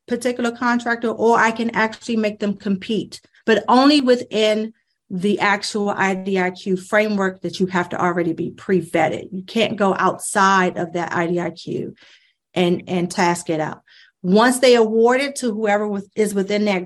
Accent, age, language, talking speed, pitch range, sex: American, 40-59, English, 155 wpm, 185-235 Hz, female